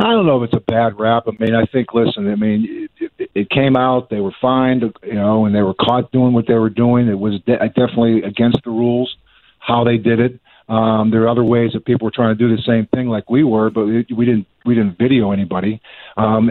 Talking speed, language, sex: 260 wpm, English, male